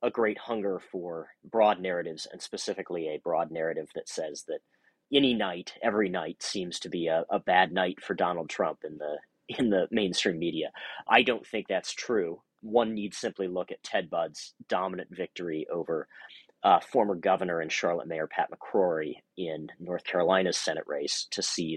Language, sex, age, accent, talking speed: English, male, 40-59, American, 175 wpm